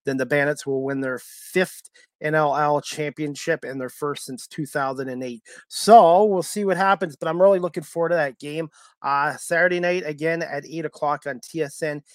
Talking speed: 180 wpm